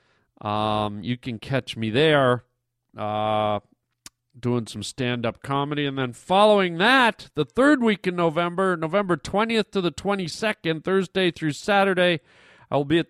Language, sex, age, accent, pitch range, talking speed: English, male, 40-59, American, 125-175 Hz, 140 wpm